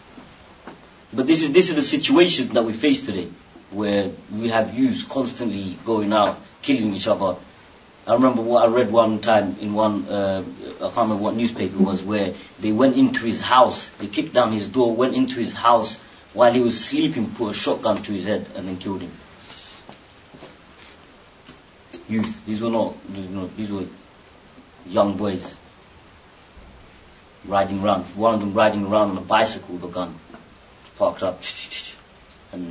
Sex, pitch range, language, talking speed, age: male, 95-125 Hz, English, 165 wpm, 30-49